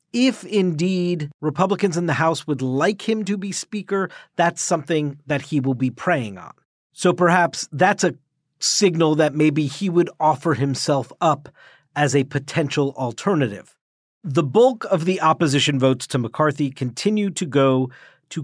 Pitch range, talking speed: 130-165 Hz, 155 wpm